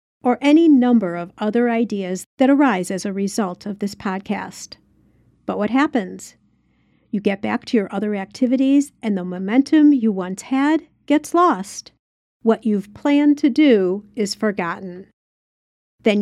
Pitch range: 200-275 Hz